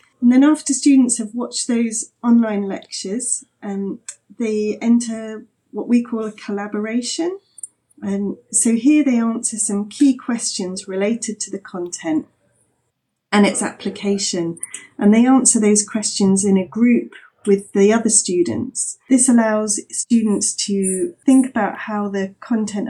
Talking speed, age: 140 wpm, 30-49